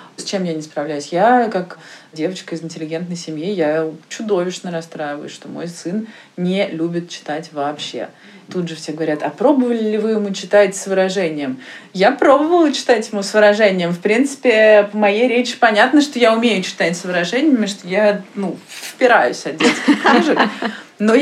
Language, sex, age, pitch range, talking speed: Russian, female, 20-39, 165-220 Hz, 165 wpm